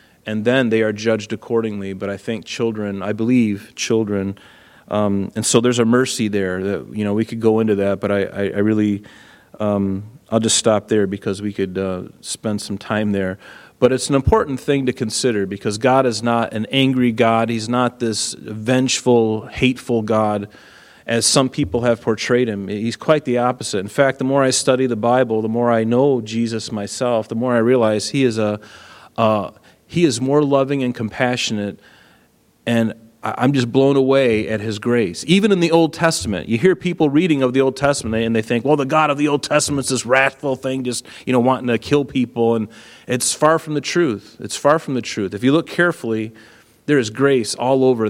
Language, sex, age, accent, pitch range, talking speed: English, male, 30-49, American, 110-130 Hz, 205 wpm